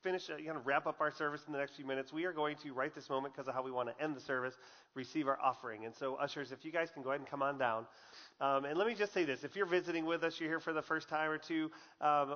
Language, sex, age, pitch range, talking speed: English, male, 30-49, 140-165 Hz, 325 wpm